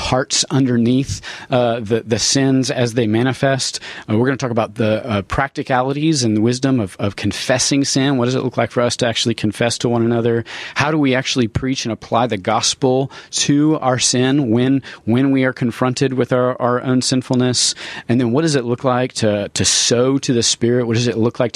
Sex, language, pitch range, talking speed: male, English, 105-130 Hz, 215 wpm